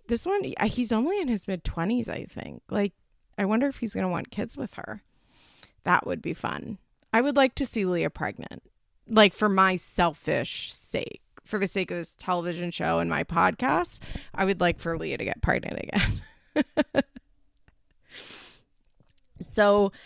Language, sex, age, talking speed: English, female, 20-39, 170 wpm